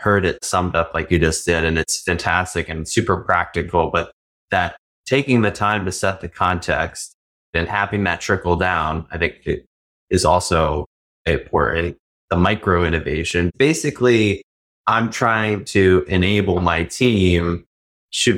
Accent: American